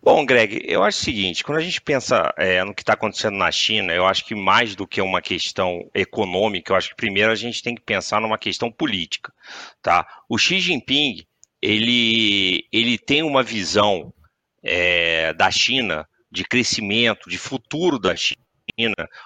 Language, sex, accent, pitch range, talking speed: Portuguese, male, Brazilian, 95-140 Hz, 160 wpm